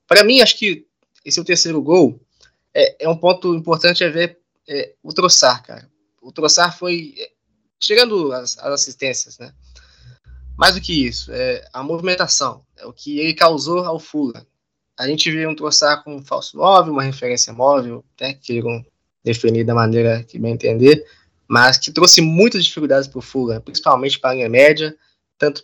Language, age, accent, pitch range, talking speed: Portuguese, 20-39, Brazilian, 130-160 Hz, 175 wpm